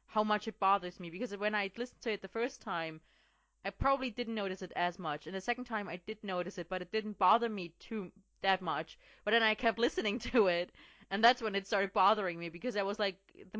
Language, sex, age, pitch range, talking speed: English, female, 20-39, 170-235 Hz, 245 wpm